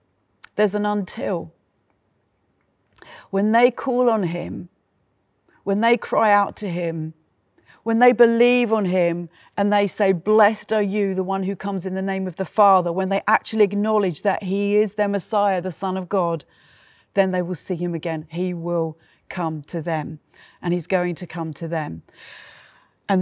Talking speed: 175 wpm